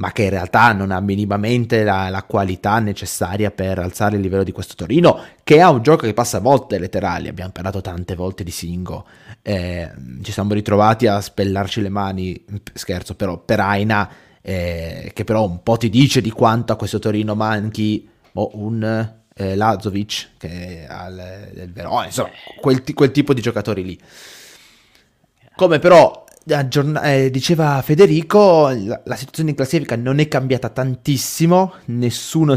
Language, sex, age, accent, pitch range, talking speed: Italian, male, 20-39, native, 100-130 Hz, 160 wpm